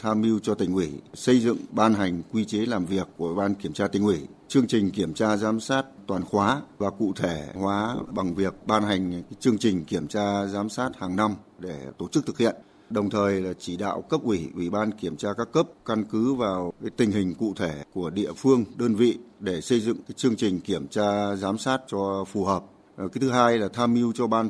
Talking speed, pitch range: 235 wpm, 95-115 Hz